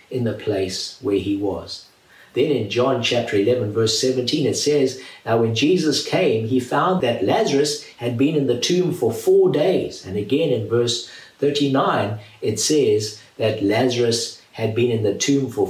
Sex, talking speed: male, 175 wpm